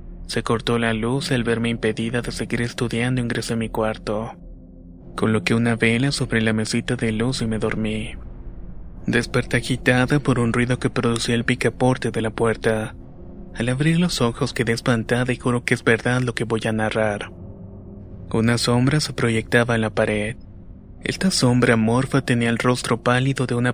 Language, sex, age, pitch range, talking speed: Spanish, male, 20-39, 110-125 Hz, 175 wpm